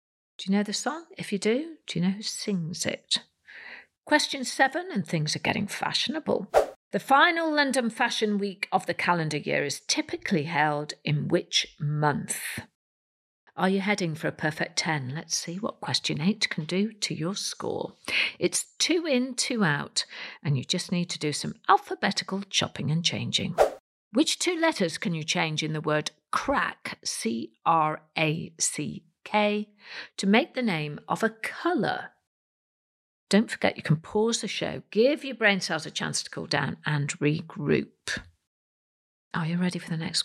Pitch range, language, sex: 160-230 Hz, English, female